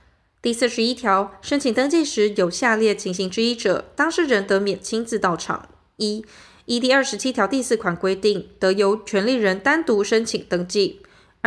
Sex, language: female, Chinese